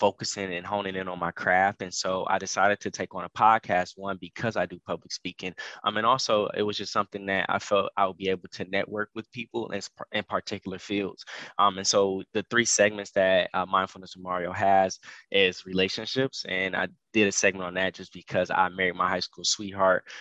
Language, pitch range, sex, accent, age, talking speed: English, 95-100 Hz, male, American, 10-29, 215 wpm